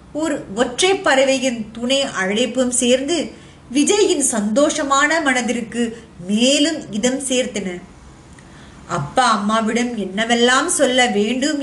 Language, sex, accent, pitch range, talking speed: Tamil, female, native, 220-285 Hz, 55 wpm